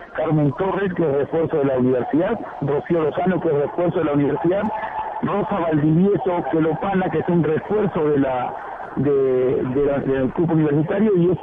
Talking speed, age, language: 175 wpm, 50-69, Spanish